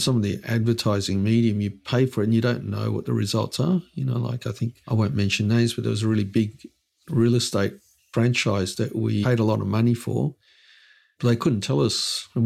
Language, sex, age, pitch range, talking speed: English, male, 50-69, 105-130 Hz, 235 wpm